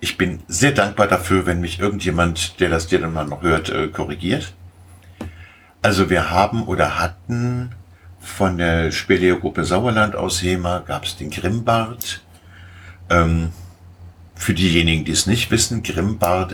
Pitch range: 85-100 Hz